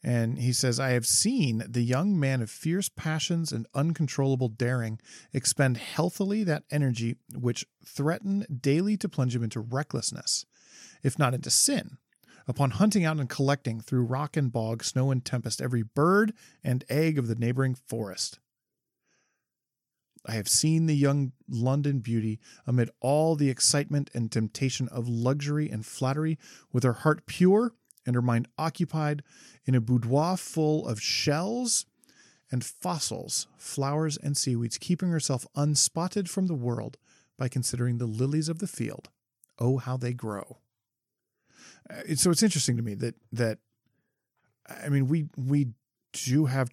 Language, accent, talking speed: English, American, 150 wpm